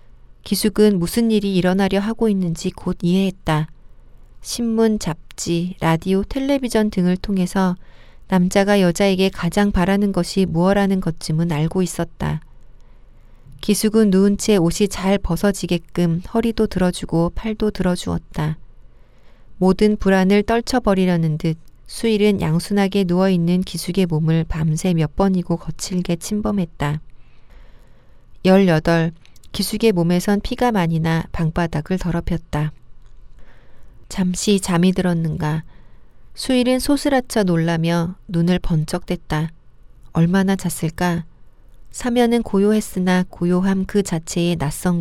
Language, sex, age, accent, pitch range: Korean, female, 40-59, native, 165-200 Hz